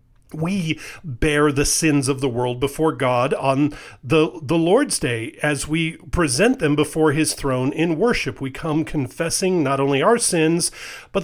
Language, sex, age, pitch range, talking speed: English, male, 40-59, 135-200 Hz, 165 wpm